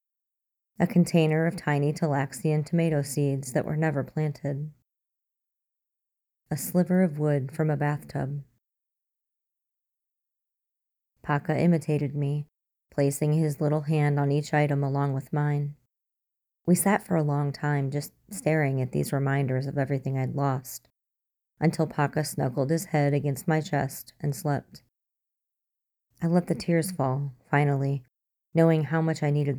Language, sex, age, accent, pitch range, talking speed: English, female, 30-49, American, 140-160 Hz, 135 wpm